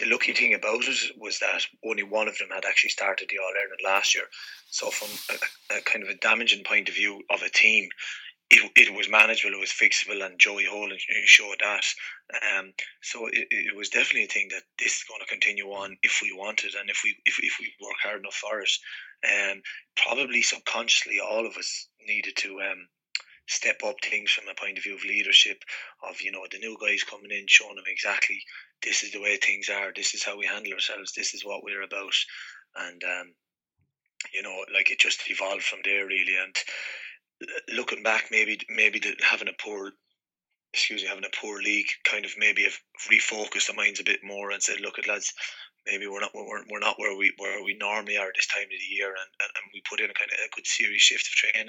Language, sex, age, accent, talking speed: English, male, 20-39, Irish, 230 wpm